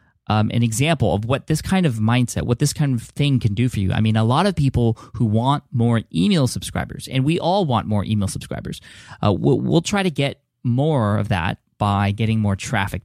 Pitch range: 100-135 Hz